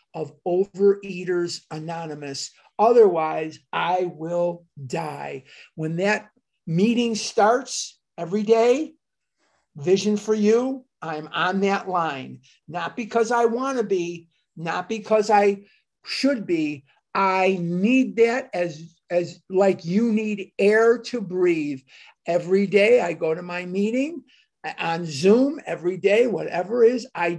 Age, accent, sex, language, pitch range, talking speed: 50-69, American, male, English, 170-215 Hz, 125 wpm